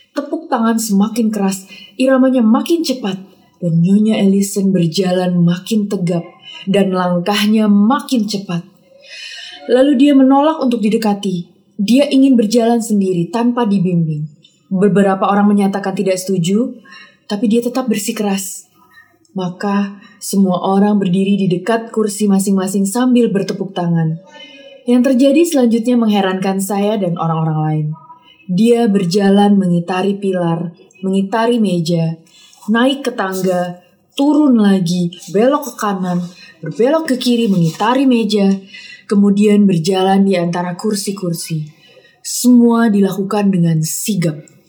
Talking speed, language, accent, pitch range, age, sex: 115 wpm, Indonesian, native, 180-230 Hz, 20-39, female